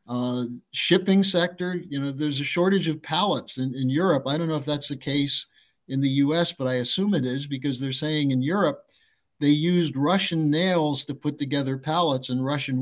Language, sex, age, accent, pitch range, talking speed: English, male, 50-69, American, 130-165 Hz, 200 wpm